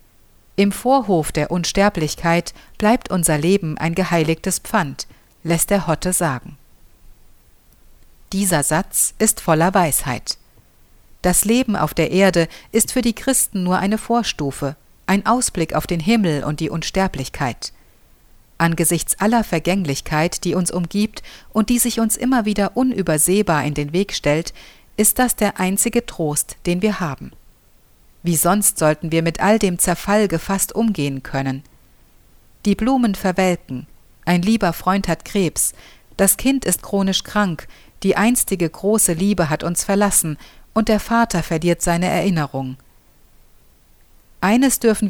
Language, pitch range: German, 155-210 Hz